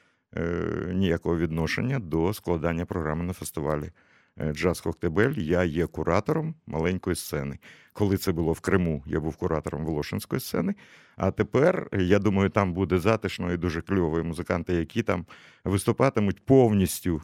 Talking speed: 135 wpm